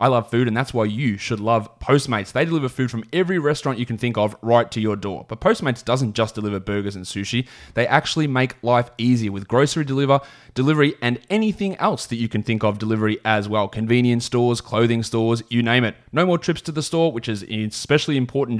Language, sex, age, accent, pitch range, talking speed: English, male, 20-39, Australian, 110-140 Hz, 220 wpm